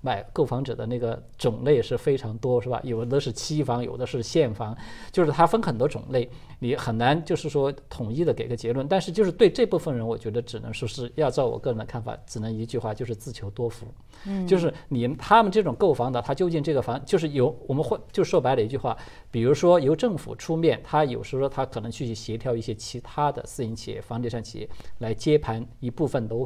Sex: male